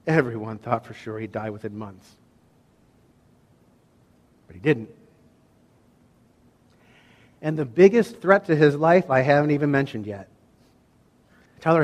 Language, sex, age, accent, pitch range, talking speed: English, male, 50-69, American, 115-150 Hz, 120 wpm